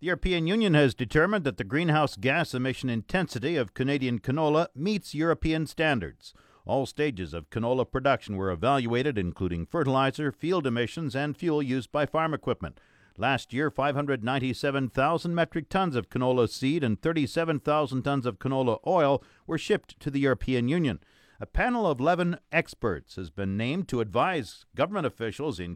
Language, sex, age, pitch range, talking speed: English, male, 50-69, 120-160 Hz, 155 wpm